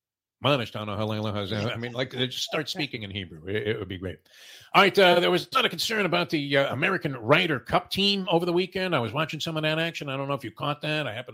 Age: 50-69